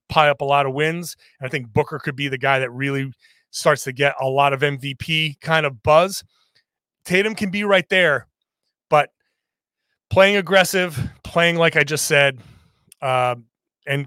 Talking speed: 170 wpm